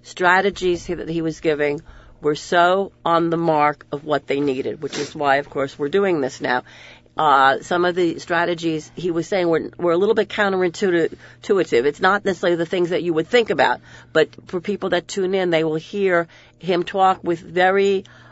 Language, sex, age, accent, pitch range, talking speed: English, female, 50-69, American, 160-200 Hz, 195 wpm